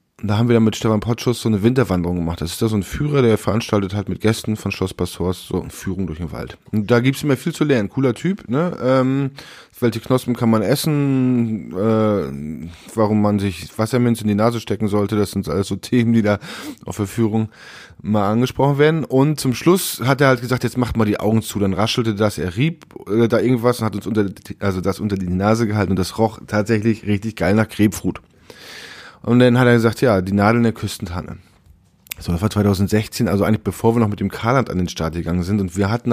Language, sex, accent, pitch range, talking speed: German, male, German, 95-115 Hz, 235 wpm